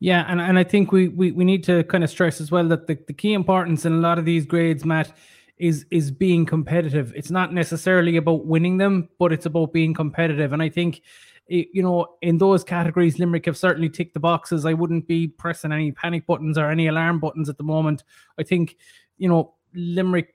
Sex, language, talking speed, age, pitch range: male, English, 225 wpm, 20-39, 155-175 Hz